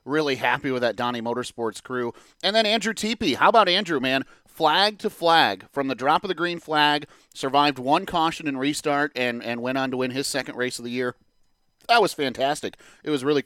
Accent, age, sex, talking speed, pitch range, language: American, 30-49, male, 220 wpm, 130-165 Hz, English